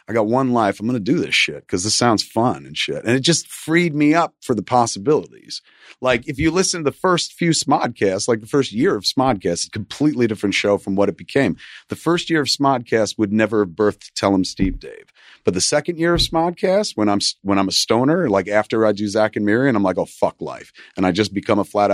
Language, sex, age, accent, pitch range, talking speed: English, male, 40-59, American, 110-170 Hz, 245 wpm